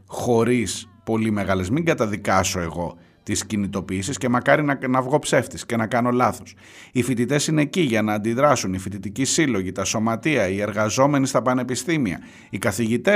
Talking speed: 165 wpm